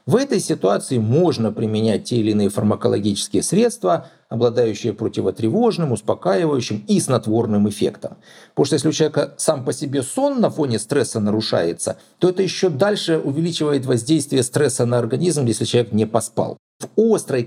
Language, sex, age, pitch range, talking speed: Russian, male, 50-69, 125-195 Hz, 150 wpm